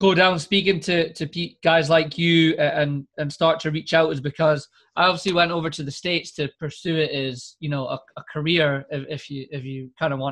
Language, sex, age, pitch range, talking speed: English, male, 20-39, 145-170 Hz, 235 wpm